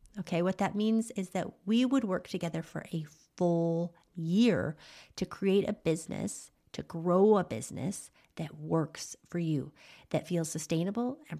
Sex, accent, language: female, American, English